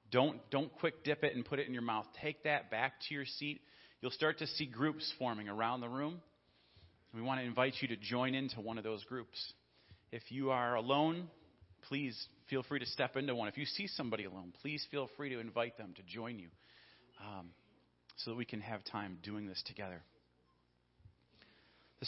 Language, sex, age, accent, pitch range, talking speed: English, male, 40-59, American, 100-140 Hz, 200 wpm